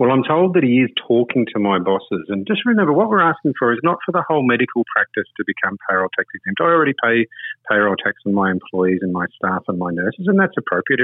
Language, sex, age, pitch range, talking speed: English, male, 40-59, 100-140 Hz, 250 wpm